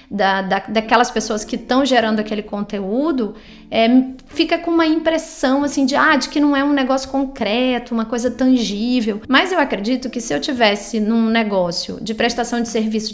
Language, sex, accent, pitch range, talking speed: Portuguese, female, Brazilian, 225-275 Hz, 185 wpm